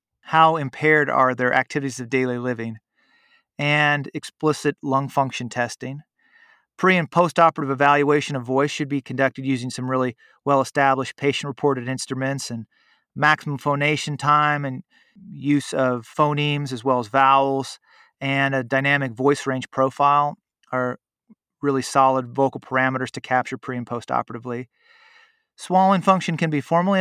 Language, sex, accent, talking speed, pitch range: English, male, American, 135 wpm, 125-150 Hz